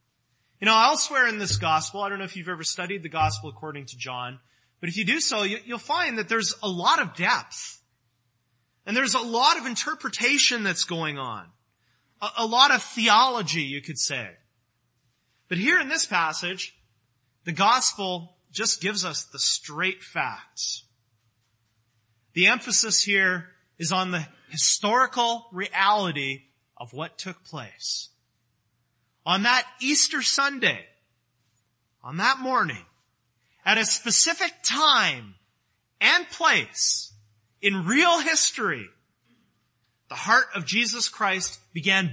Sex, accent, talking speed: male, American, 135 wpm